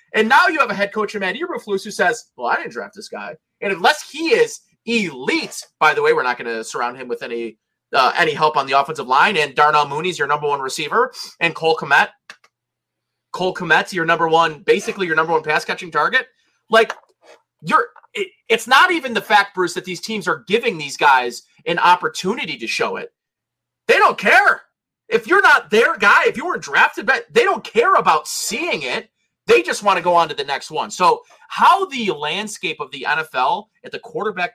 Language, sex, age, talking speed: English, male, 30-49, 210 wpm